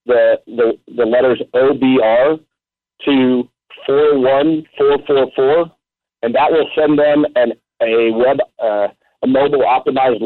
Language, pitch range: English, 120-155 Hz